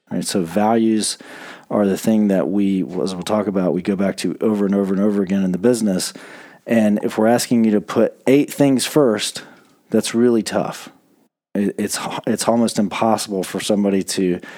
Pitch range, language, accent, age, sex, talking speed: 105-125 Hz, English, American, 40-59, male, 180 wpm